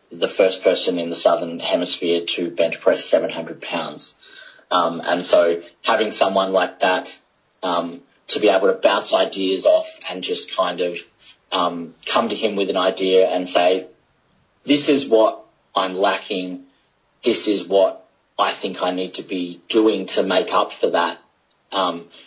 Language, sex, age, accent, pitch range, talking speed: English, male, 30-49, Australian, 90-105 Hz, 165 wpm